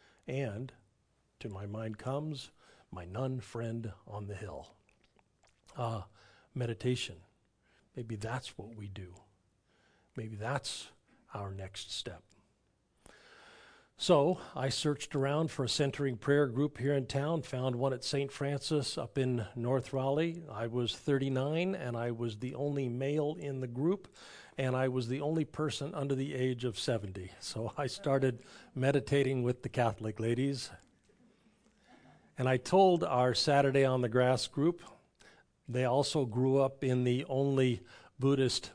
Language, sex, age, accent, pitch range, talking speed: English, male, 50-69, American, 115-145 Hz, 140 wpm